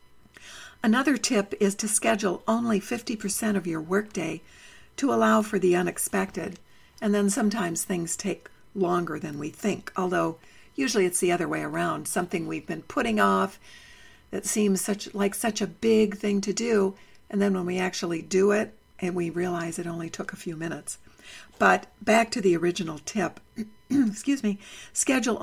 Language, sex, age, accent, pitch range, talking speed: English, female, 60-79, American, 180-220 Hz, 170 wpm